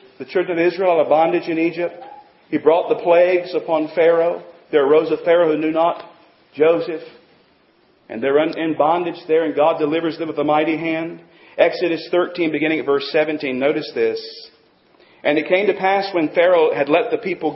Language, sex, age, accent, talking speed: English, male, 40-59, American, 190 wpm